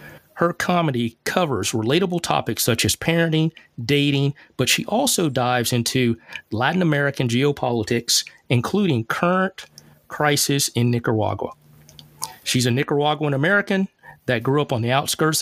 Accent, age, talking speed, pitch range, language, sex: American, 40-59, 125 wpm, 120-160 Hz, English, male